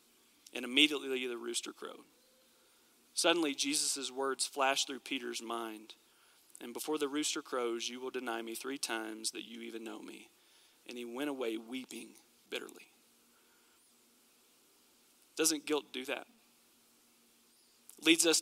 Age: 40-59